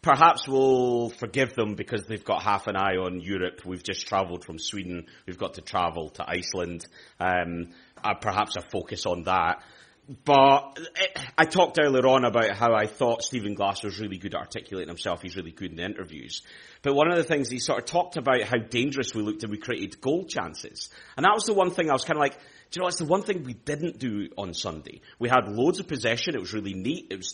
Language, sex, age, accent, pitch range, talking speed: English, male, 30-49, British, 105-140 Hz, 230 wpm